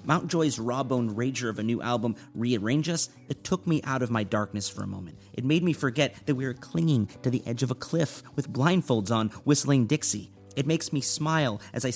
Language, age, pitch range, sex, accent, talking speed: English, 30-49, 110-140 Hz, male, American, 225 wpm